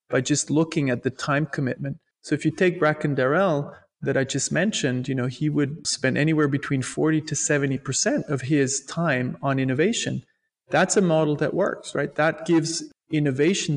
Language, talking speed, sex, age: English, 180 wpm, male, 30-49